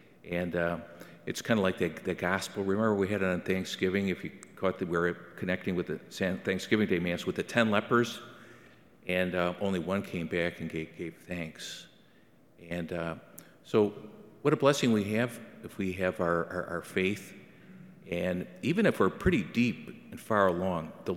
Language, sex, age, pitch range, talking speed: English, male, 50-69, 85-105 Hz, 190 wpm